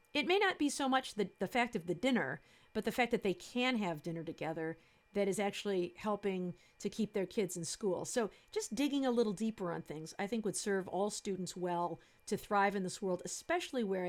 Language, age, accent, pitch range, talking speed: English, 50-69, American, 185-240 Hz, 225 wpm